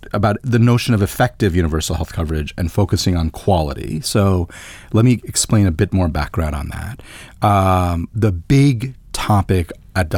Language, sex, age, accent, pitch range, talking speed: English, male, 30-49, American, 90-130 Hz, 160 wpm